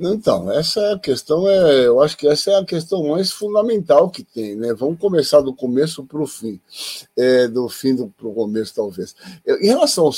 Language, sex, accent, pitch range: Portuguese, male, Brazilian, 135-195 Hz